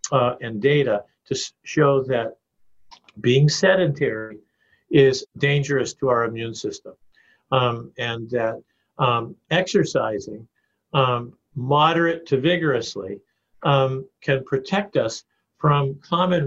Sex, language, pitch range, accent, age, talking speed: male, English, 130-155 Hz, American, 50-69, 105 wpm